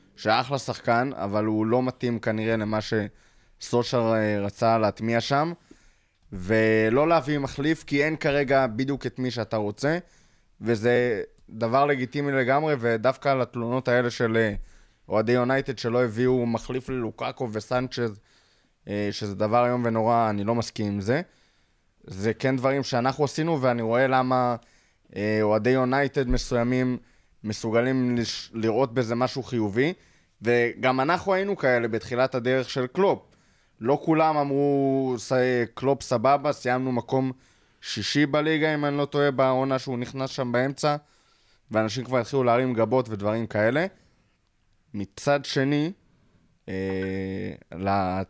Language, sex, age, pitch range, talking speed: Hebrew, male, 20-39, 110-135 Hz, 130 wpm